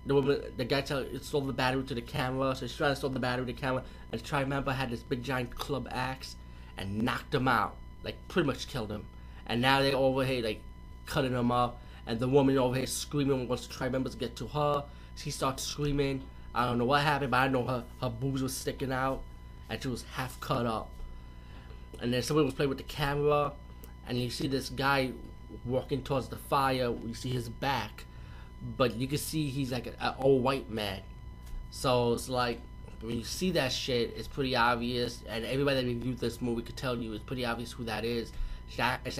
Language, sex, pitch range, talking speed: English, male, 110-140 Hz, 220 wpm